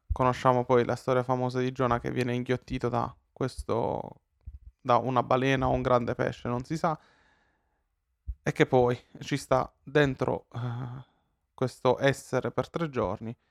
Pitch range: 110-140 Hz